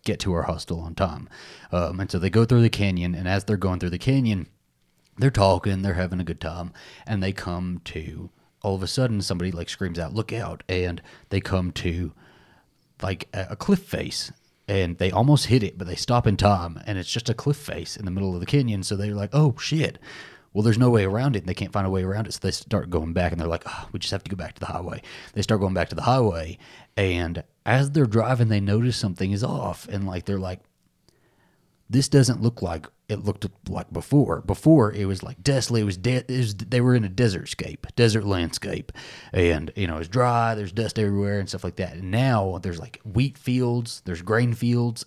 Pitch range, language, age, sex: 90-115 Hz, English, 30-49, male